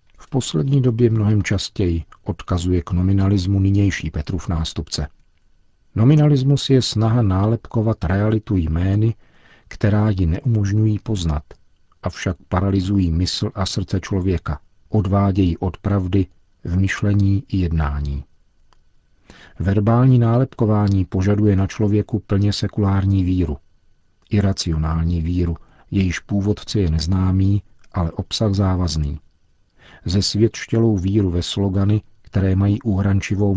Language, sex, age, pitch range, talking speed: Czech, male, 50-69, 90-105 Hz, 105 wpm